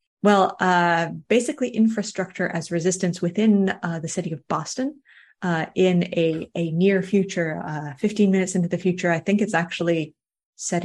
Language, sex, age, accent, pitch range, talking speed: English, female, 30-49, American, 175-210 Hz, 160 wpm